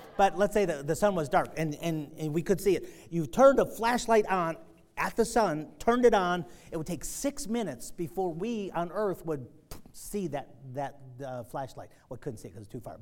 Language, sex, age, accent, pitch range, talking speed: English, male, 40-59, American, 145-230 Hz, 230 wpm